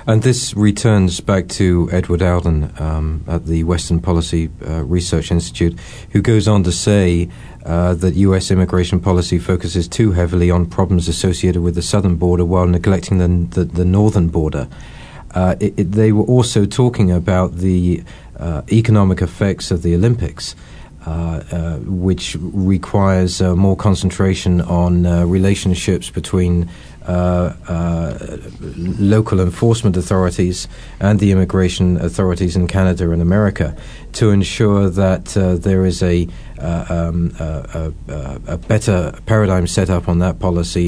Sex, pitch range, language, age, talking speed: male, 85-100 Hz, English, 40-59, 150 wpm